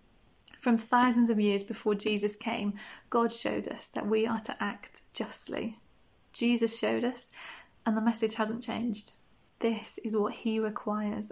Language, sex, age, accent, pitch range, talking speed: English, female, 30-49, British, 210-230 Hz, 155 wpm